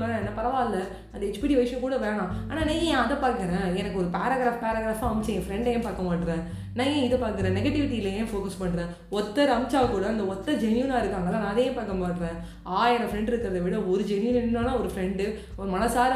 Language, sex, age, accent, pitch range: Tamil, female, 20-39, native, 190-240 Hz